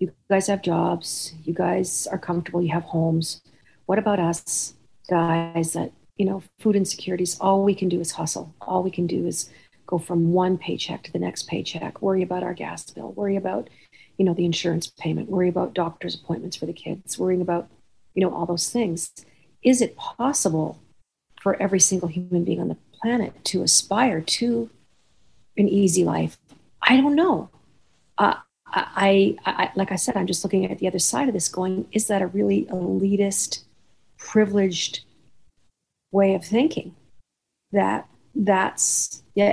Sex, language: female, English